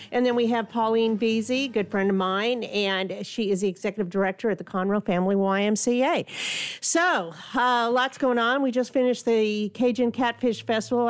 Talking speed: 185 wpm